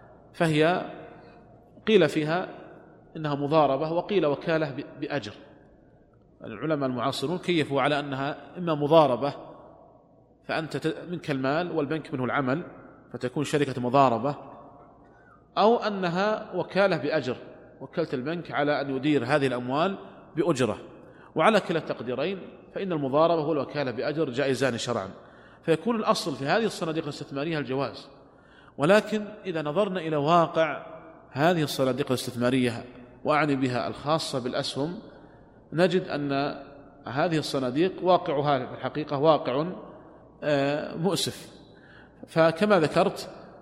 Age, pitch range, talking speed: 40-59, 135-170 Hz, 105 wpm